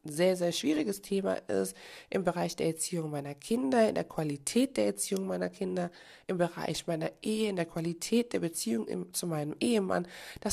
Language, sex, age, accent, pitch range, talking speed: German, female, 20-39, German, 160-205 Hz, 180 wpm